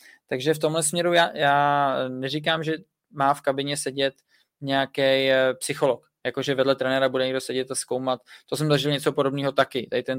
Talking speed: 175 wpm